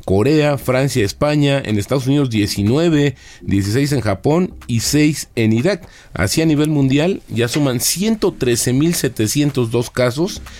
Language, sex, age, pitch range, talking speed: Spanish, male, 40-59, 100-135 Hz, 125 wpm